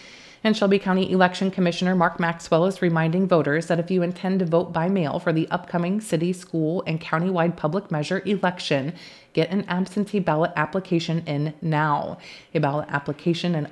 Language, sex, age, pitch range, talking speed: English, female, 30-49, 155-180 Hz, 170 wpm